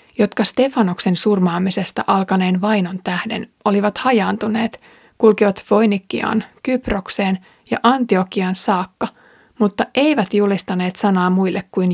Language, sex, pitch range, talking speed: Finnish, female, 190-230 Hz, 100 wpm